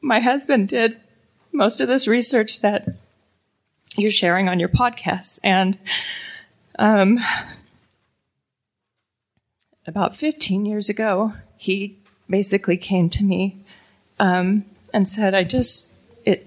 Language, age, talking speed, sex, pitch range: English, 30-49, 110 wpm, female, 185-215 Hz